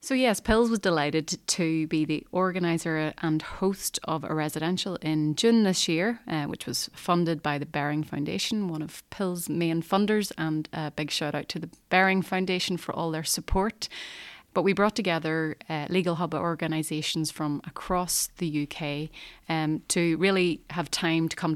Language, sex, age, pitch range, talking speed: English, female, 30-49, 155-175 Hz, 175 wpm